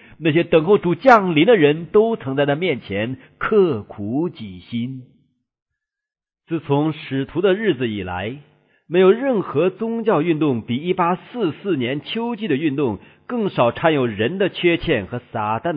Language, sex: Chinese, male